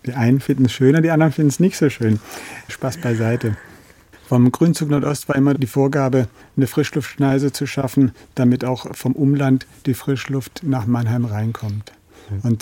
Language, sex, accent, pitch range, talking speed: German, male, German, 120-140 Hz, 165 wpm